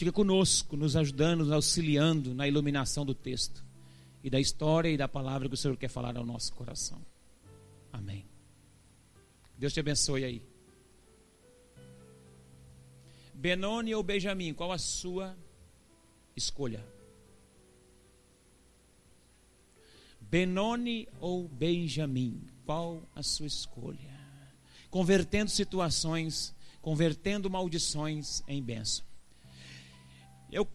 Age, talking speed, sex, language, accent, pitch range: 40-59, 100 wpm, male, Portuguese, Brazilian, 130-215 Hz